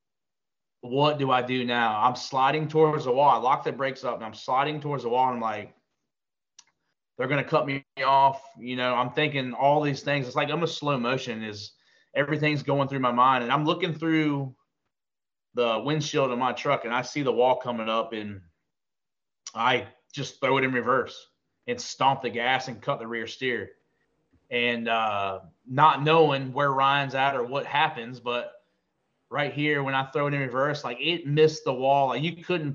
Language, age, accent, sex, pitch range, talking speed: English, 20-39, American, male, 120-145 Hz, 200 wpm